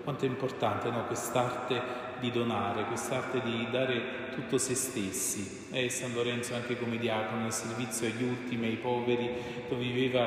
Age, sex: 30-49, male